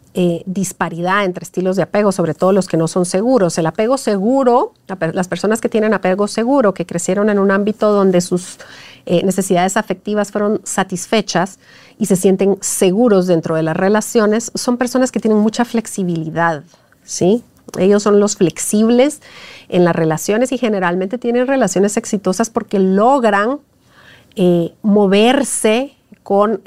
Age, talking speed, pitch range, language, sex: 40-59, 145 wpm, 180-230 Hz, Spanish, female